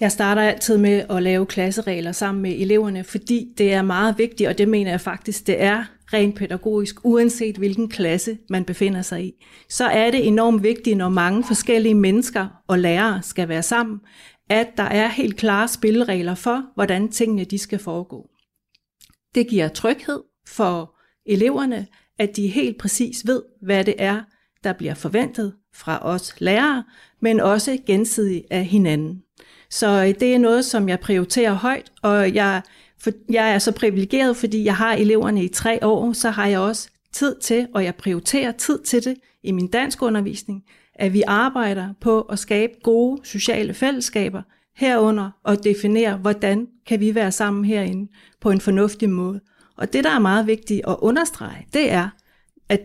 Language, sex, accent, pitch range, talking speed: Danish, female, native, 195-230 Hz, 170 wpm